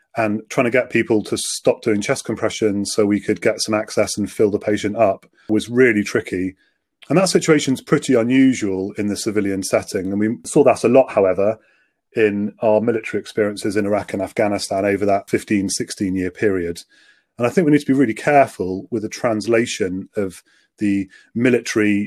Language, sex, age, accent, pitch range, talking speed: English, male, 30-49, British, 100-115 Hz, 190 wpm